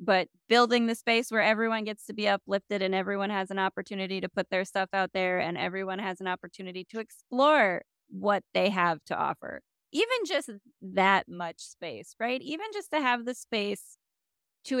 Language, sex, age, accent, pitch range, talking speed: English, female, 20-39, American, 180-230 Hz, 185 wpm